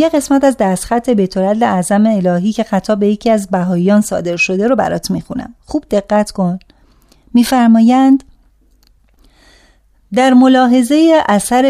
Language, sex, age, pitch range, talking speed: Persian, female, 30-49, 195-250 Hz, 130 wpm